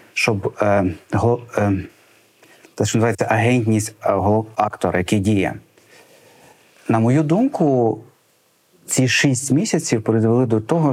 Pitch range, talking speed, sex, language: 110-150 Hz, 100 wpm, male, Ukrainian